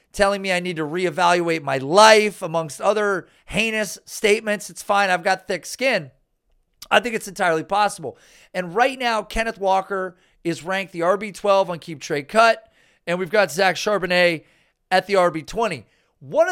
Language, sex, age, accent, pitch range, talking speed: English, male, 40-59, American, 170-210 Hz, 165 wpm